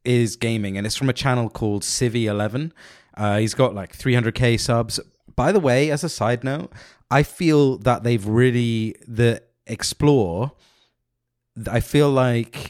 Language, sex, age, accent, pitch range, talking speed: English, male, 30-49, British, 105-130 Hz, 155 wpm